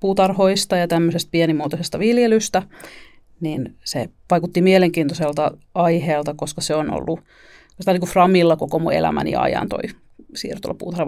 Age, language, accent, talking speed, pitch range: 40-59, Finnish, native, 130 wpm, 165-195 Hz